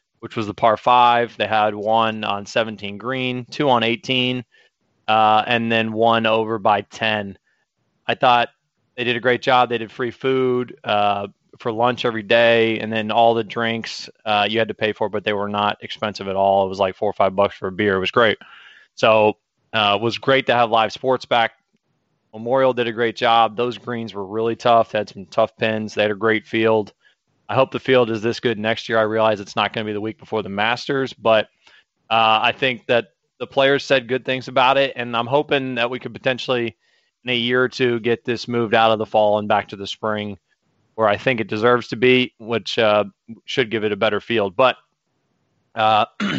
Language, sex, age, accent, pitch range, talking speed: English, male, 20-39, American, 110-125 Hz, 220 wpm